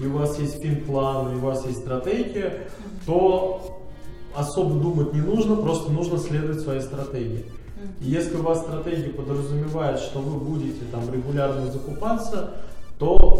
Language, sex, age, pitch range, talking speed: Russian, male, 20-39, 130-155 Hz, 150 wpm